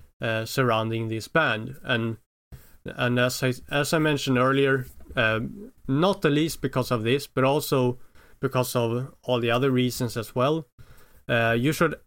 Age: 30-49